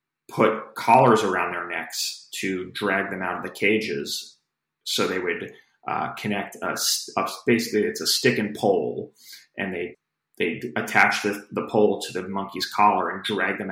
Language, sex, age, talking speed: English, male, 30-49, 165 wpm